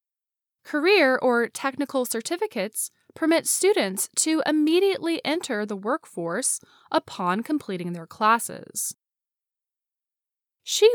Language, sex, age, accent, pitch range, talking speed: English, female, 10-29, American, 205-325 Hz, 90 wpm